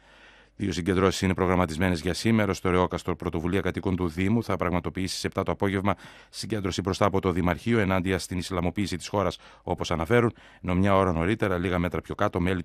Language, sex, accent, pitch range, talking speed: Greek, male, native, 85-100 Hz, 185 wpm